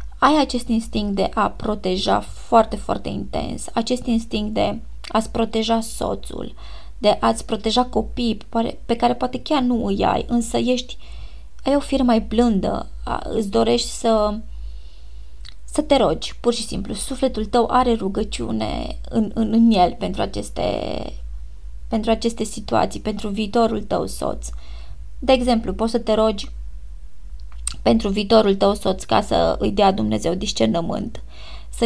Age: 20-39